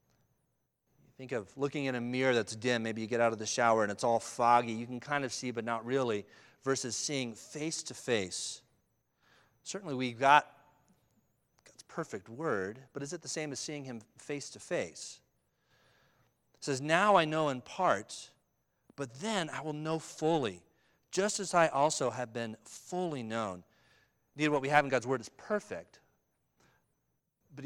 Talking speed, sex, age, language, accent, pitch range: 175 wpm, male, 40-59, English, American, 125-170 Hz